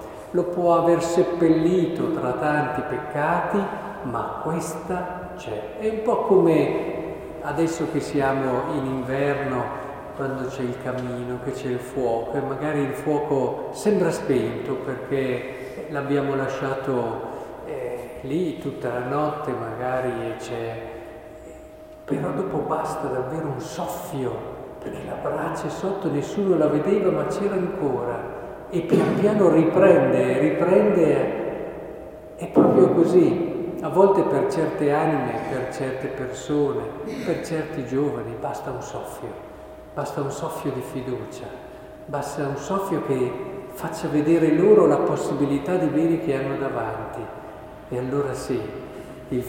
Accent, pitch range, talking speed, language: native, 130-160 Hz, 125 wpm, Italian